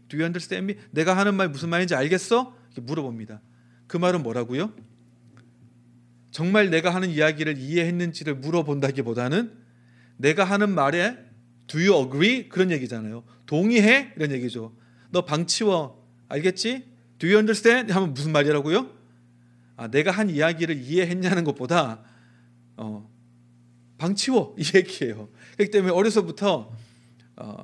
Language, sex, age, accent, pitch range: Korean, male, 40-59, native, 120-180 Hz